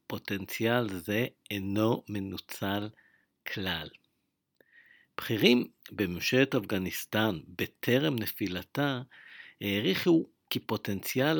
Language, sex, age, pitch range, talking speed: English, male, 50-69, 100-125 Hz, 70 wpm